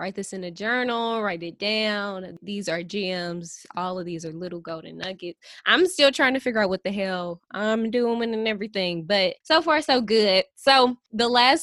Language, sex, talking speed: English, female, 200 wpm